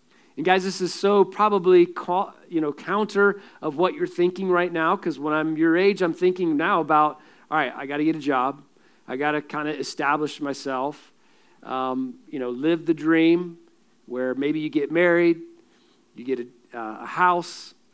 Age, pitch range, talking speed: 40-59, 130-170 Hz, 190 wpm